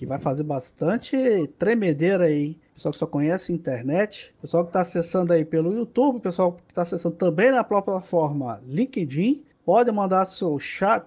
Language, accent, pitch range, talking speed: Portuguese, Brazilian, 160-225 Hz, 170 wpm